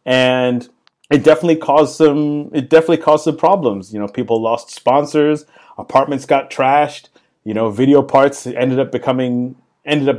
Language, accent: English, American